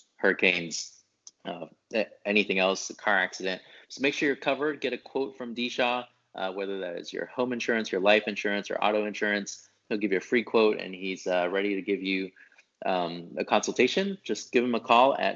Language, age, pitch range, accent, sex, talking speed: English, 30-49, 95-120 Hz, American, male, 205 wpm